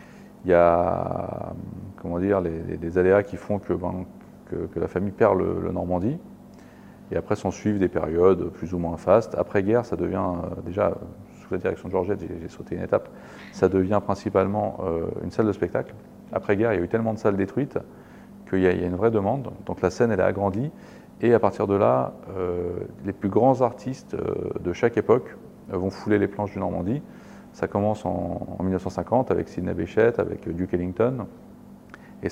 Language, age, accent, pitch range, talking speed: French, 30-49, French, 90-100 Hz, 200 wpm